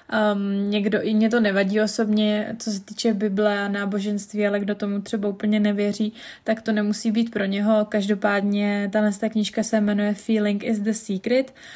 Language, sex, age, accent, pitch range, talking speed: Czech, female, 20-39, native, 205-225 Hz, 180 wpm